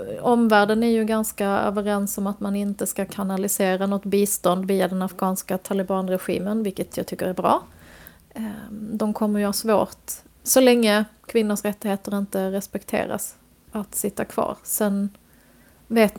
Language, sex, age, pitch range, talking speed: Swedish, female, 30-49, 195-215 Hz, 140 wpm